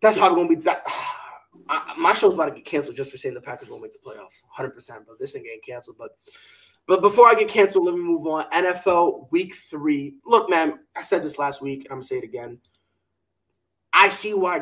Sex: male